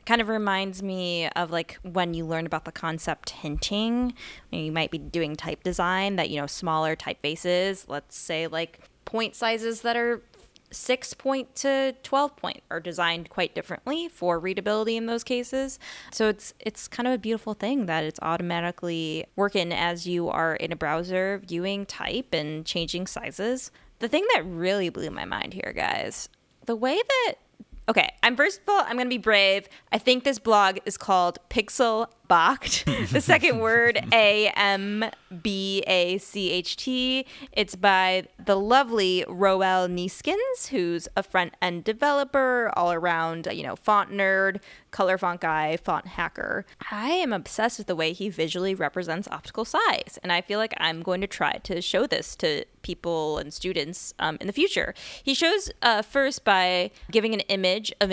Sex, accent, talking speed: female, American, 165 wpm